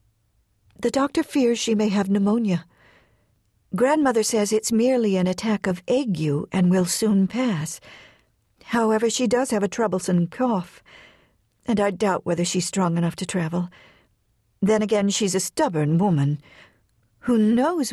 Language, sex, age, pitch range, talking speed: English, female, 60-79, 145-220 Hz, 145 wpm